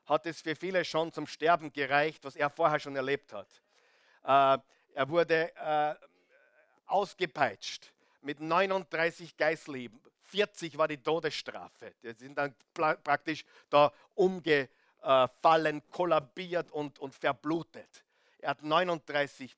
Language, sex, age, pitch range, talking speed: German, male, 50-69, 145-175 Hz, 120 wpm